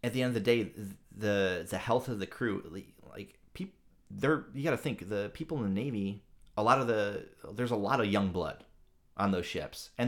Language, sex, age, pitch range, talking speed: English, male, 30-49, 90-110 Hz, 225 wpm